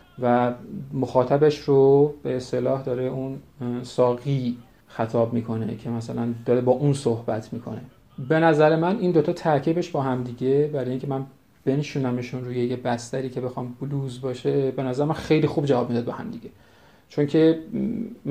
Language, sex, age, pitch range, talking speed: Persian, male, 40-59, 125-145 Hz, 160 wpm